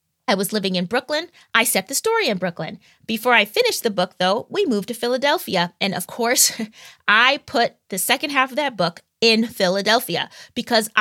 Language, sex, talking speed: English, female, 190 wpm